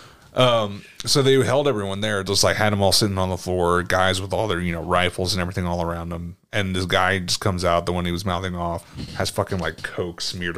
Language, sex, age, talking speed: English, male, 30-49, 250 wpm